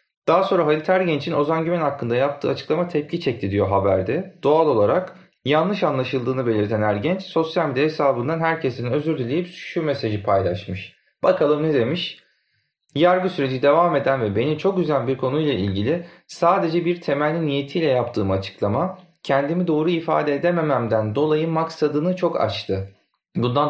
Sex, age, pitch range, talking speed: male, 40-59, 115-160 Hz, 145 wpm